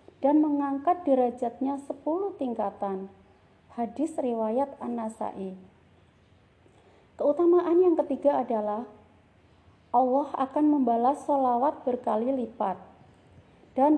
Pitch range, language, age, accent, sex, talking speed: 245-315 Hz, Indonesian, 30-49, native, female, 80 wpm